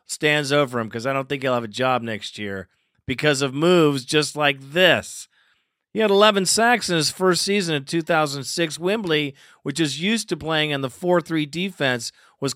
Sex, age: male, 40-59